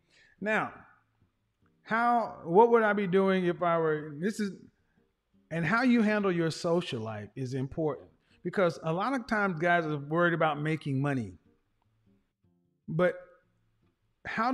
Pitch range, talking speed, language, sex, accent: 130-200 Hz, 140 wpm, English, male, American